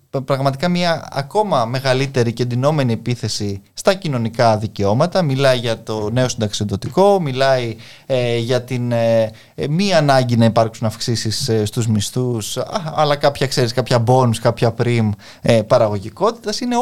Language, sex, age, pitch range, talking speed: Greek, male, 20-39, 115-160 Hz, 140 wpm